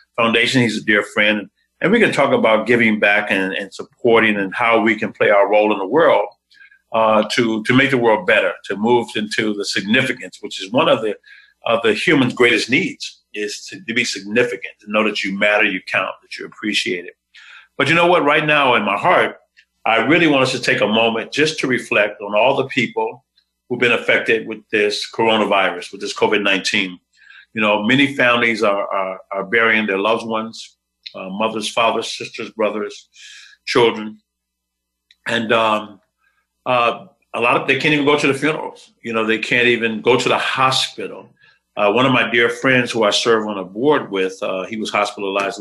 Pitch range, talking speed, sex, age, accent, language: 100-125 Hz, 195 wpm, male, 50-69, American, English